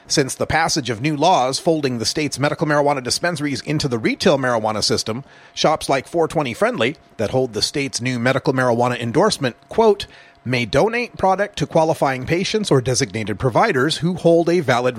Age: 40-59